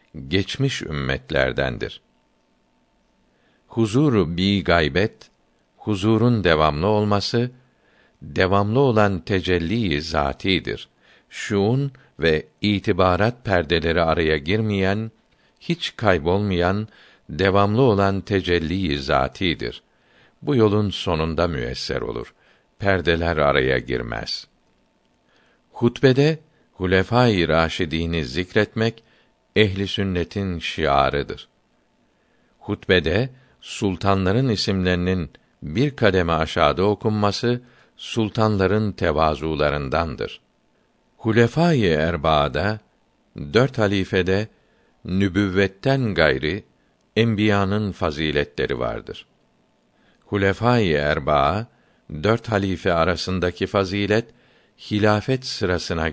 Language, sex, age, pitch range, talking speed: Turkish, male, 60-79, 85-110 Hz, 70 wpm